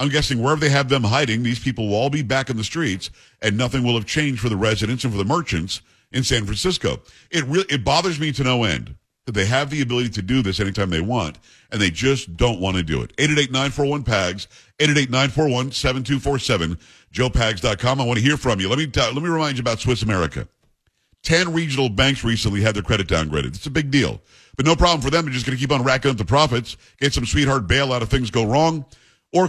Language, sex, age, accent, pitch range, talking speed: English, male, 50-69, American, 115-140 Hz, 265 wpm